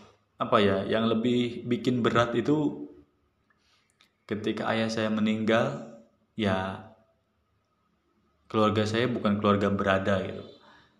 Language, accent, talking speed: Indonesian, native, 100 wpm